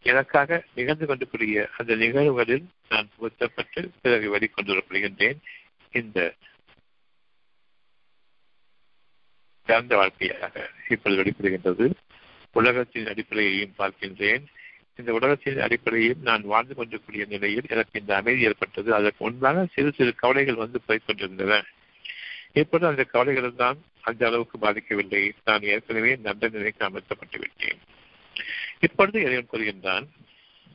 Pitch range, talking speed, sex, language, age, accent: 110-145 Hz, 100 wpm, male, Tamil, 50-69, native